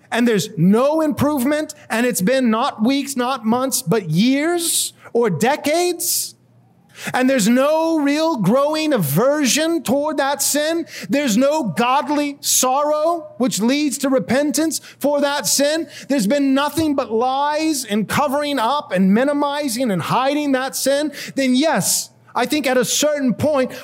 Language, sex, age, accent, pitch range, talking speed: English, male, 30-49, American, 230-290 Hz, 145 wpm